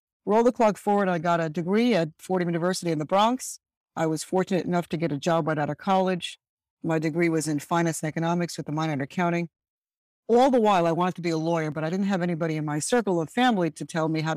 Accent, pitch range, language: American, 160-190 Hz, English